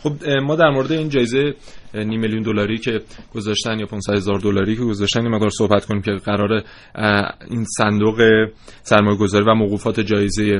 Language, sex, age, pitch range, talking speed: Persian, male, 20-39, 105-125 Hz, 165 wpm